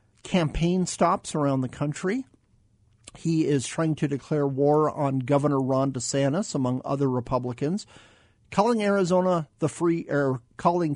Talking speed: 130 wpm